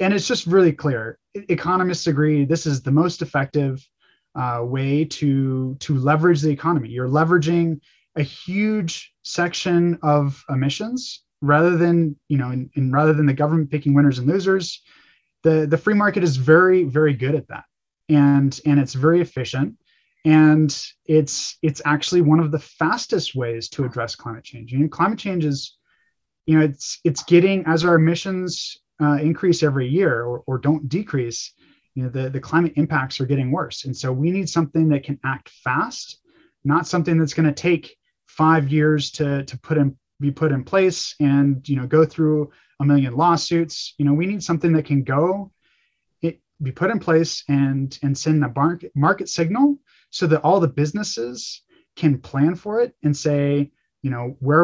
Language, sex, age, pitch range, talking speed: English, male, 20-39, 140-170 Hz, 180 wpm